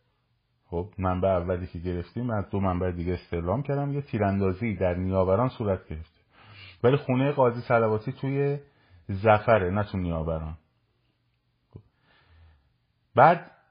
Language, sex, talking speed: Persian, male, 125 wpm